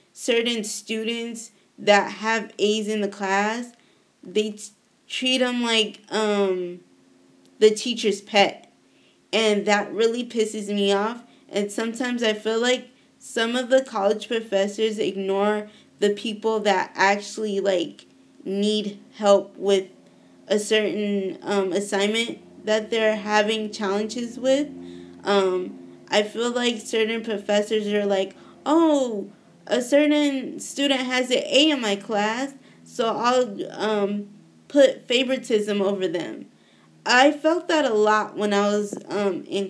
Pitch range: 200-230 Hz